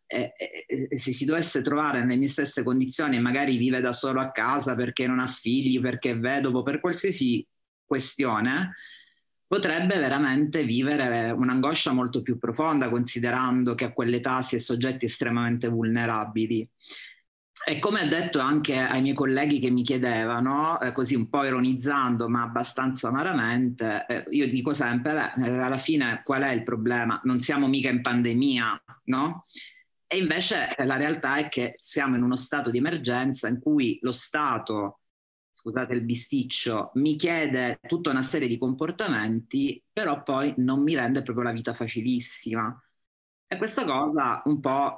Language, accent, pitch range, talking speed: Italian, native, 120-140 Hz, 150 wpm